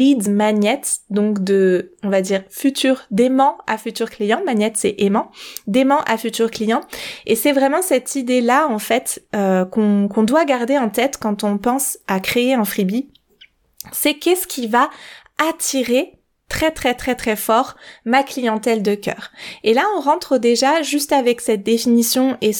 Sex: female